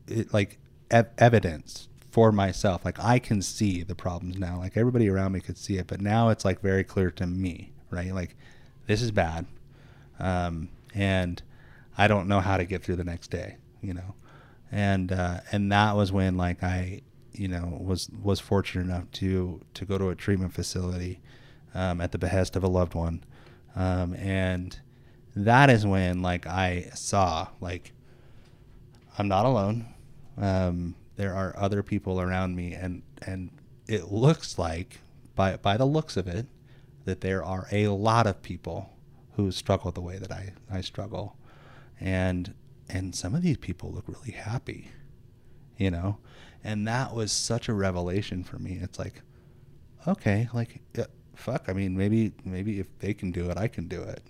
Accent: American